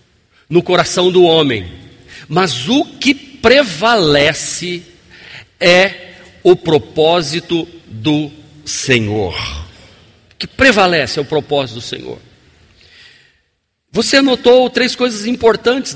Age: 50-69